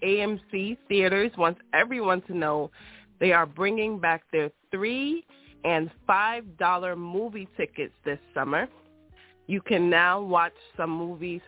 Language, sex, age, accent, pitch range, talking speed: English, female, 20-39, American, 155-190 Hz, 130 wpm